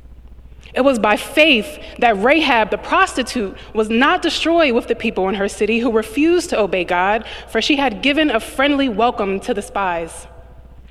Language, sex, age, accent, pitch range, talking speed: English, female, 20-39, American, 210-295 Hz, 175 wpm